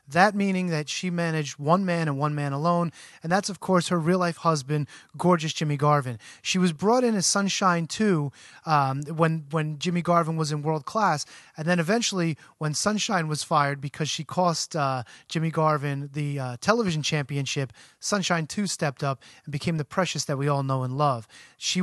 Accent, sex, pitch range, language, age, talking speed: American, male, 145-180 Hz, English, 30-49, 190 wpm